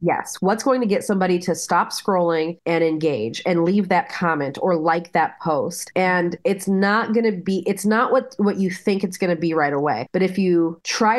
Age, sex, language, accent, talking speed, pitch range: 30-49, female, English, American, 220 wpm, 160-205 Hz